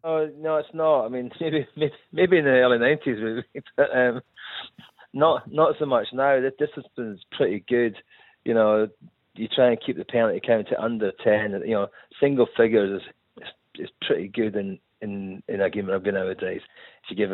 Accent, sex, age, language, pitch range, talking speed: British, male, 30-49, English, 100-150 Hz, 205 wpm